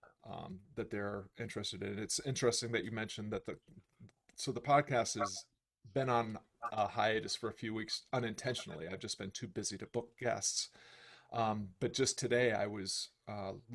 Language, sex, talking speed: English, male, 175 wpm